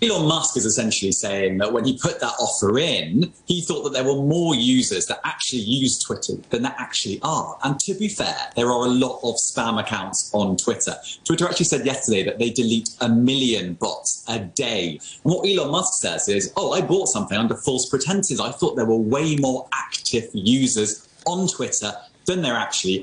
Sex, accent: male, British